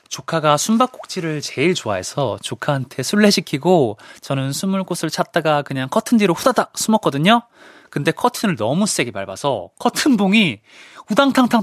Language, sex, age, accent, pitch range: Korean, male, 20-39, native, 115-165 Hz